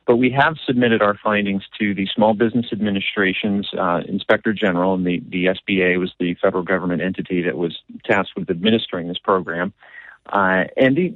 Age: 40-59